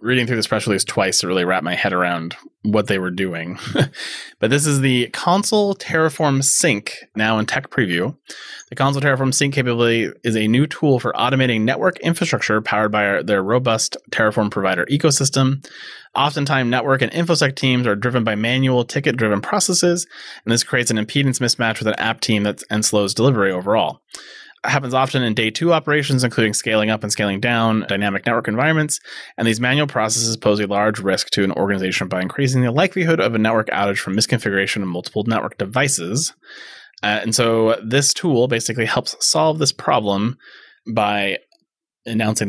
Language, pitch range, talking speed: English, 110-135 Hz, 180 wpm